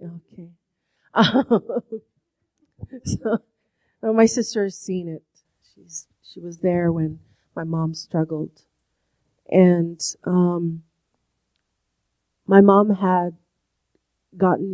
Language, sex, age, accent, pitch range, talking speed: English, female, 40-59, American, 160-185 Hz, 90 wpm